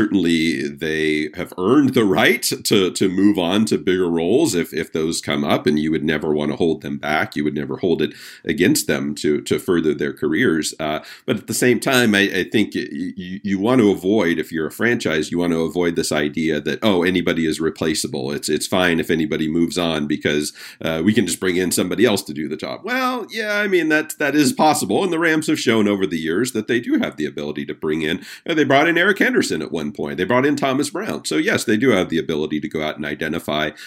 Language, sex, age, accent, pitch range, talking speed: English, male, 50-69, American, 80-125 Hz, 250 wpm